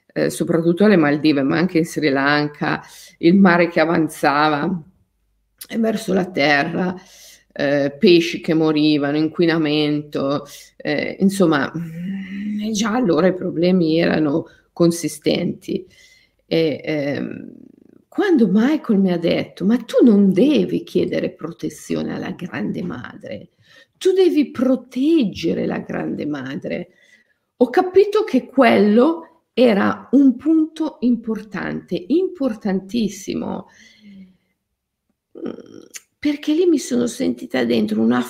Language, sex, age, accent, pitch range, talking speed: Italian, female, 50-69, native, 160-255 Hz, 100 wpm